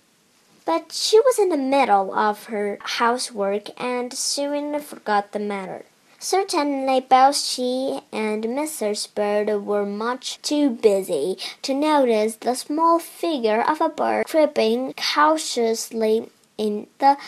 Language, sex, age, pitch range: Chinese, male, 10-29, 215-315 Hz